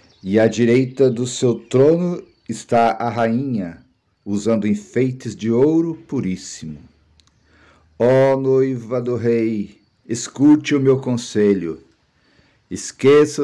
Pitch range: 105-130 Hz